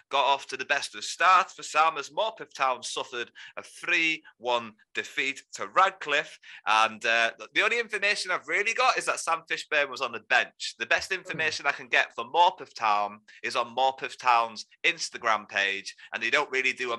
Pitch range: 120-190 Hz